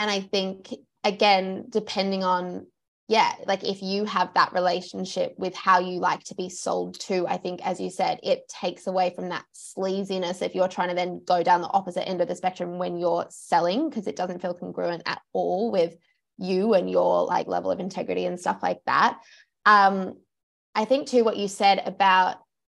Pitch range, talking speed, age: 180-205 Hz, 200 wpm, 20-39